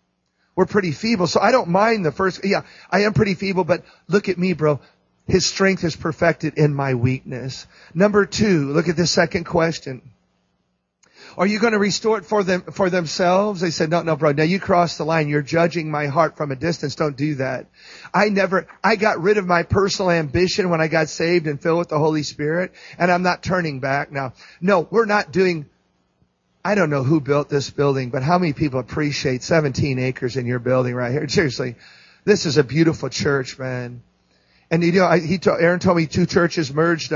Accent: American